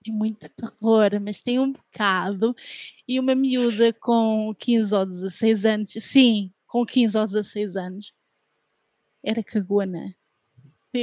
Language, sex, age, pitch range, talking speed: Portuguese, female, 20-39, 215-260 Hz, 135 wpm